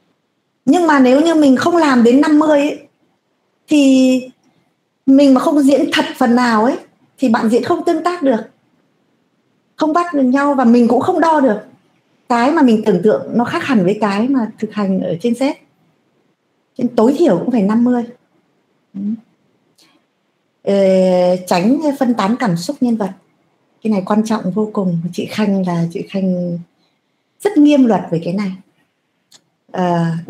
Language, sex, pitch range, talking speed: Vietnamese, female, 200-275 Hz, 165 wpm